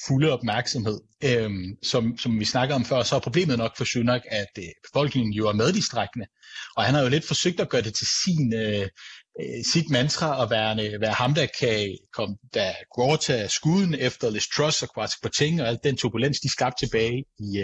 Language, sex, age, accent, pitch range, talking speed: Danish, male, 30-49, native, 110-140 Hz, 200 wpm